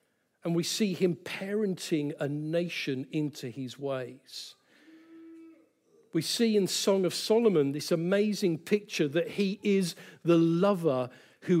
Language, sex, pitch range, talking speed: English, male, 155-200 Hz, 130 wpm